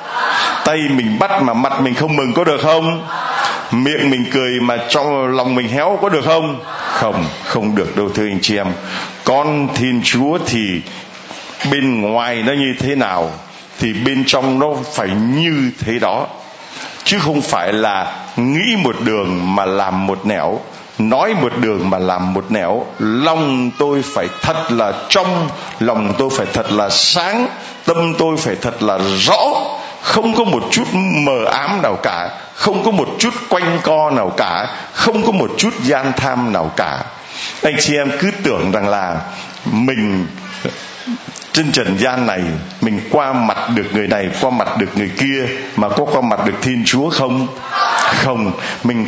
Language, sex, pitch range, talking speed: Vietnamese, male, 115-150 Hz, 170 wpm